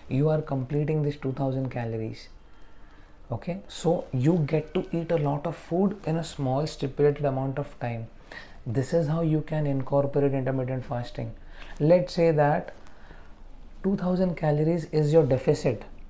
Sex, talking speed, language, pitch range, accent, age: male, 145 wpm, English, 130-160 Hz, Indian, 30-49